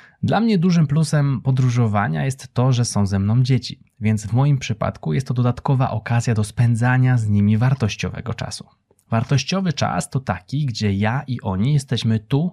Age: 20-39